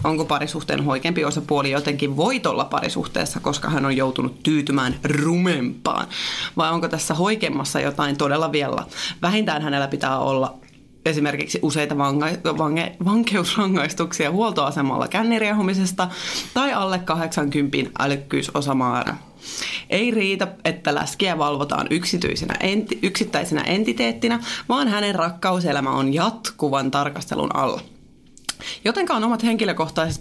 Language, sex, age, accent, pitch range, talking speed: Finnish, female, 30-49, native, 145-195 Hz, 105 wpm